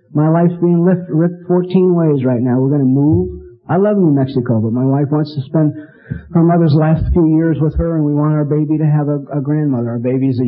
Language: English